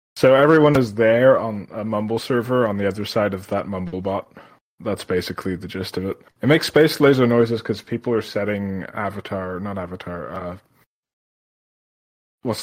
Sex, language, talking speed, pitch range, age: male, English, 170 wpm, 100-130 Hz, 20-39